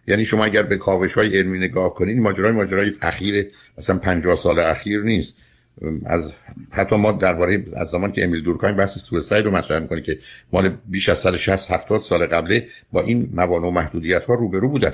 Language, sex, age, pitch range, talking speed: Persian, male, 60-79, 95-110 Hz, 200 wpm